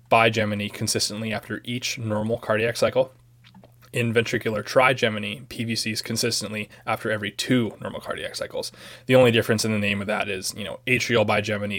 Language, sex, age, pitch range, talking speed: English, male, 20-39, 110-125 Hz, 160 wpm